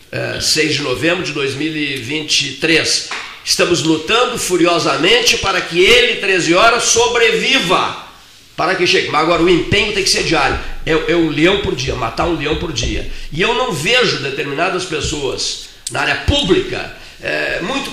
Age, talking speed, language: 50-69, 155 wpm, Portuguese